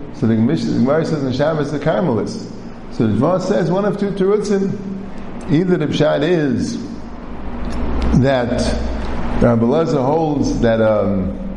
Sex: male